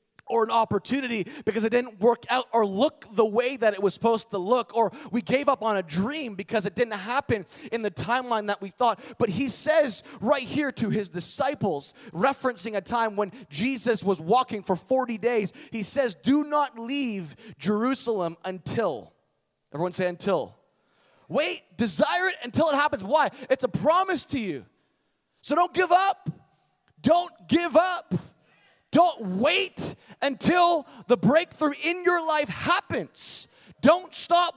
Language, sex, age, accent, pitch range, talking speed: English, male, 30-49, American, 215-310 Hz, 160 wpm